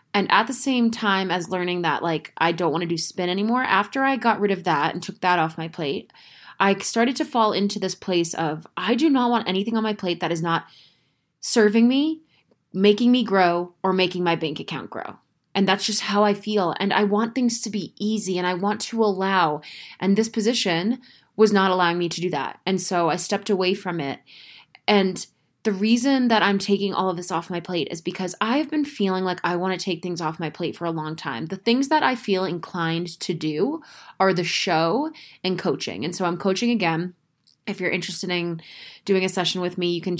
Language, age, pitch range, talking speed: English, 20-39, 170-215 Hz, 225 wpm